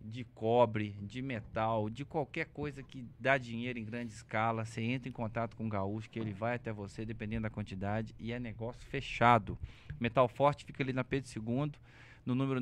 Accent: Brazilian